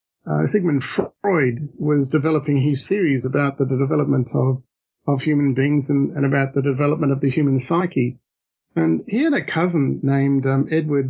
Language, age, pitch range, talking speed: English, 50-69, 135-155 Hz, 175 wpm